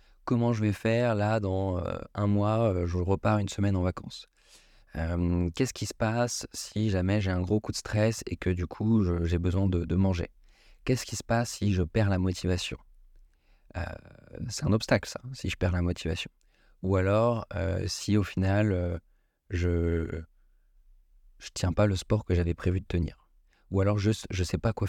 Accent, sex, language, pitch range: French, male, French, 90-110 Hz